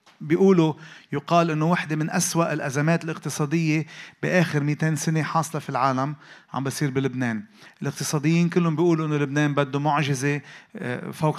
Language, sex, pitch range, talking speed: Arabic, male, 140-170 Hz, 130 wpm